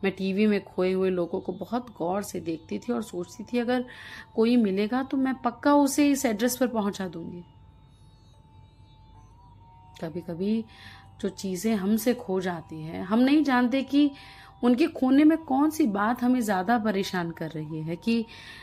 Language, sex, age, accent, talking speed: Hindi, female, 30-49, native, 170 wpm